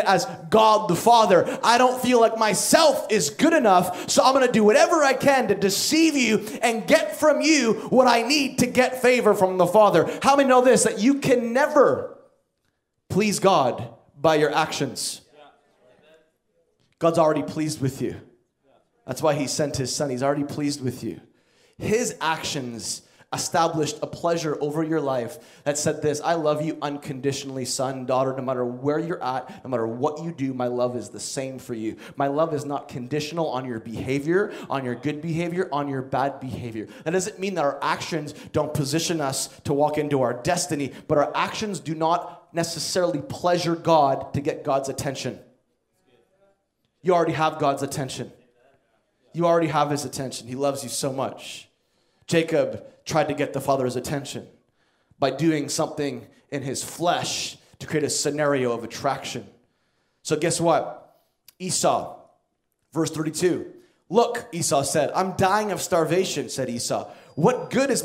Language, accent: English, American